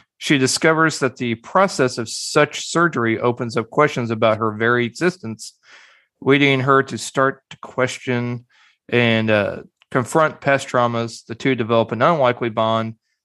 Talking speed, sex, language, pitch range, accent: 145 wpm, male, English, 110-125 Hz, American